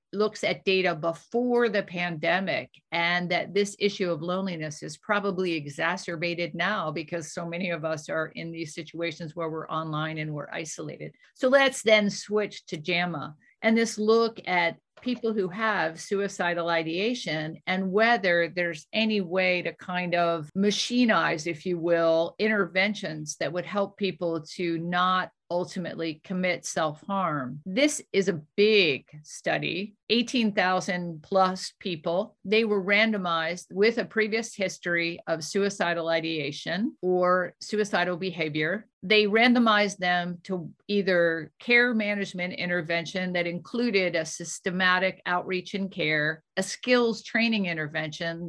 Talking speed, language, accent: 135 wpm, English, American